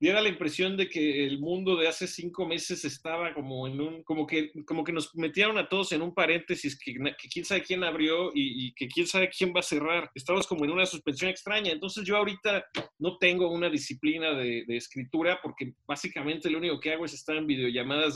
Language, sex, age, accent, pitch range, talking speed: Spanish, male, 40-59, Mexican, 150-190 Hz, 220 wpm